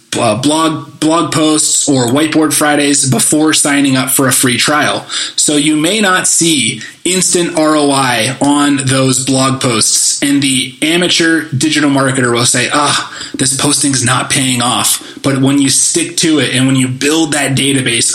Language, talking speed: English, 170 wpm